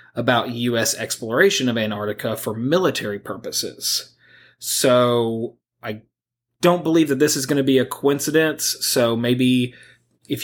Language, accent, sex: English, American, male